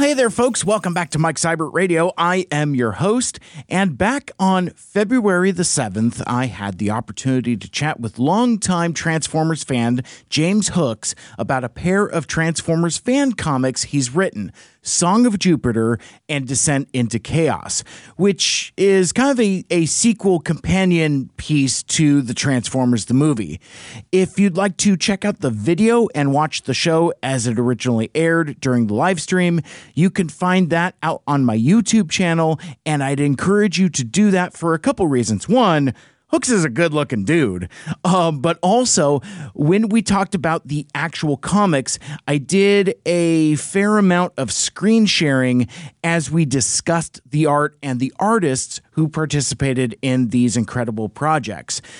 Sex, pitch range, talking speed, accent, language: male, 130-185 Hz, 160 wpm, American, English